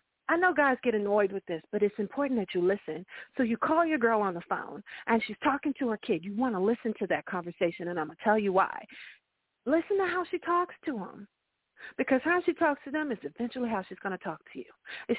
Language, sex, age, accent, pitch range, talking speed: English, female, 40-59, American, 190-260 Hz, 255 wpm